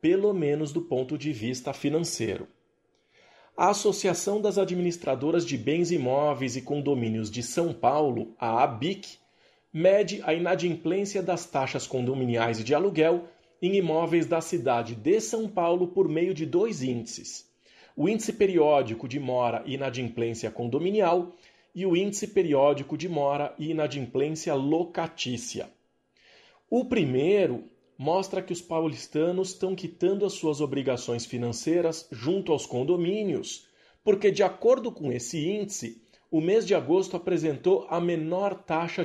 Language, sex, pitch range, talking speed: Portuguese, male, 135-185 Hz, 135 wpm